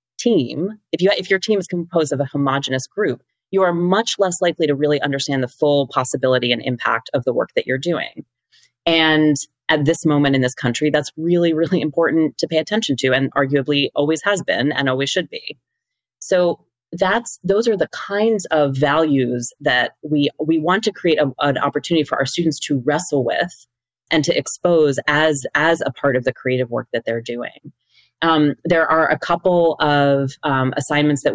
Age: 30-49